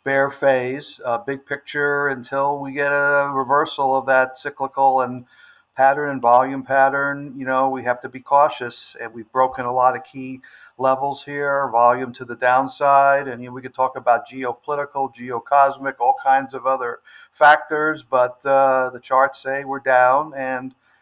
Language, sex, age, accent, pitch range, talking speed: English, male, 60-79, American, 125-140 Hz, 170 wpm